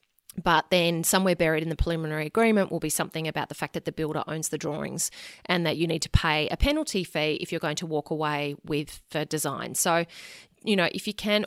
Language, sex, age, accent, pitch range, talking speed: English, female, 30-49, Australian, 155-185 Hz, 230 wpm